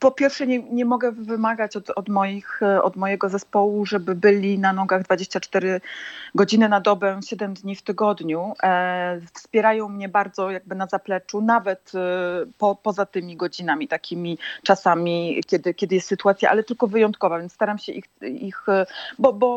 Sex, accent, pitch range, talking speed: female, native, 195-260 Hz, 145 wpm